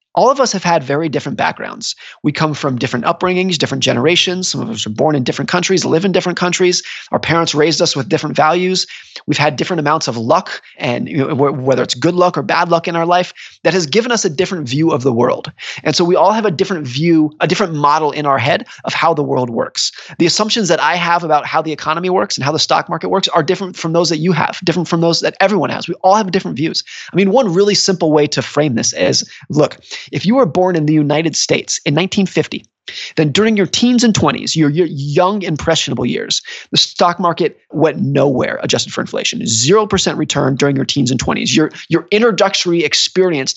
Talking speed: 230 wpm